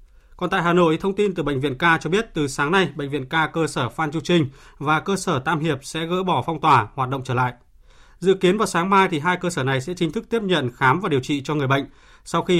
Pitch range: 140-185 Hz